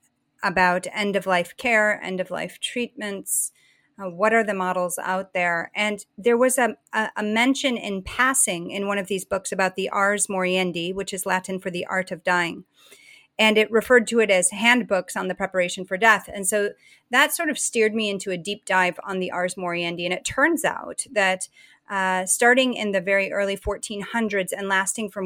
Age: 30-49